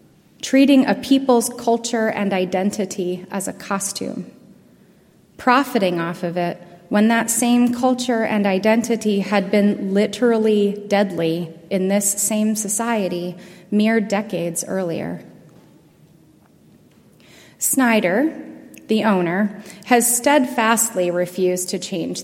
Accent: American